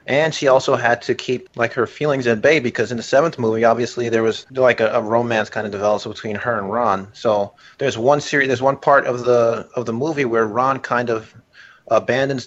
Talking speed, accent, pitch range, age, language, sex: 225 wpm, American, 110-135 Hz, 30-49, English, male